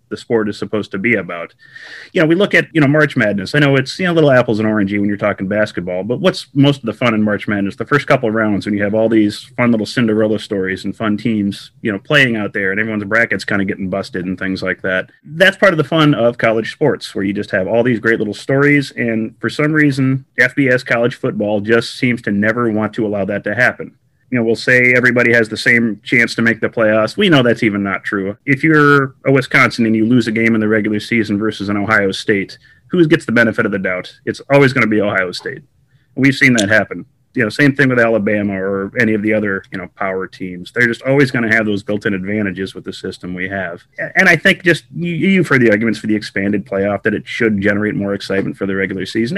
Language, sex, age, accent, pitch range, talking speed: English, male, 30-49, American, 100-130 Hz, 255 wpm